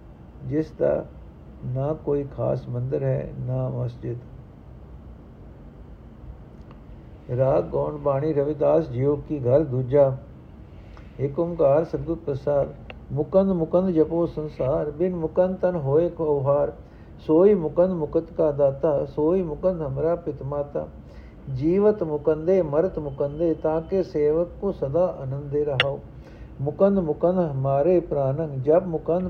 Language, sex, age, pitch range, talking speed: Punjabi, male, 60-79, 130-170 Hz, 110 wpm